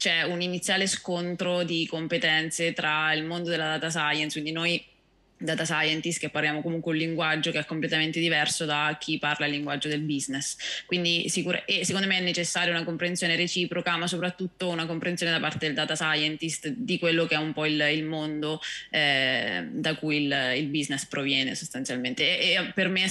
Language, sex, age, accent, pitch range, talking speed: Italian, female, 20-39, native, 155-175 Hz, 190 wpm